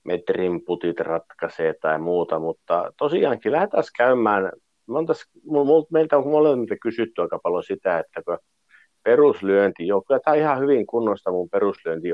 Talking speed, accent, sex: 145 wpm, native, male